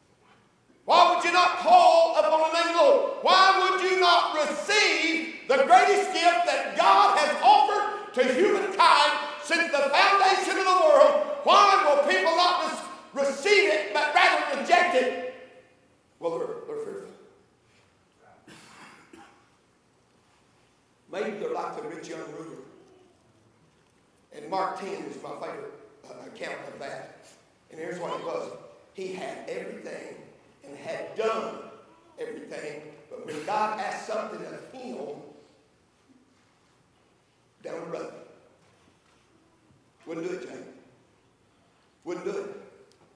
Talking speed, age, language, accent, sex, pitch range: 120 wpm, 60-79, English, American, male, 285-415 Hz